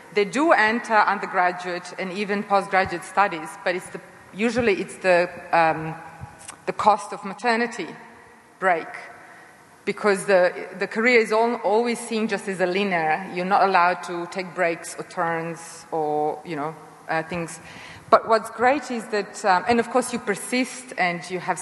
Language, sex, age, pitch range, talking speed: English, female, 30-49, 185-235 Hz, 165 wpm